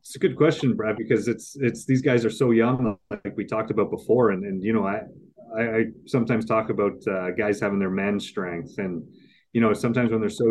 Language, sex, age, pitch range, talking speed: English, male, 30-49, 105-120 Hz, 235 wpm